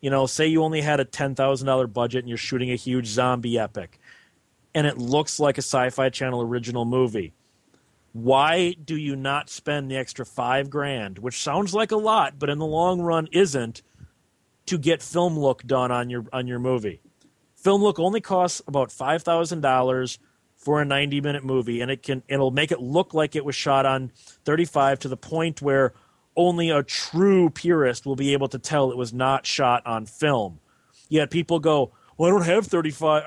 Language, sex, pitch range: English, male, 130-165 Hz